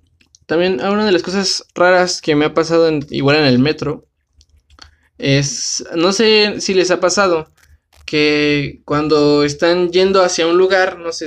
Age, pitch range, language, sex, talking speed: 20-39, 130-175 Hz, Spanish, male, 165 wpm